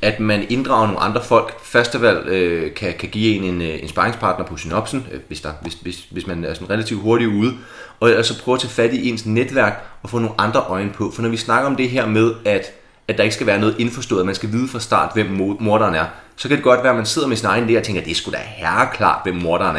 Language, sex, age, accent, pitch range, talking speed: Danish, male, 30-49, native, 100-120 Hz, 265 wpm